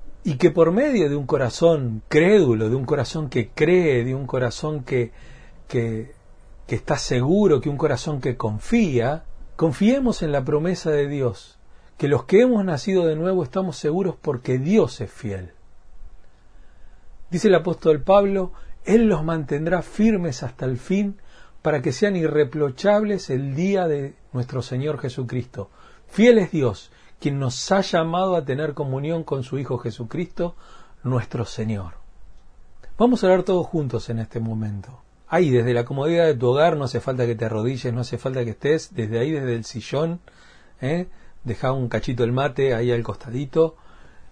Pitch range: 120-165 Hz